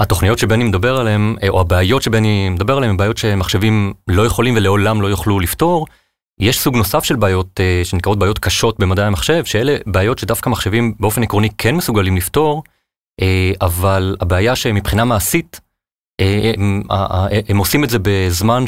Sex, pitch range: male, 95-120 Hz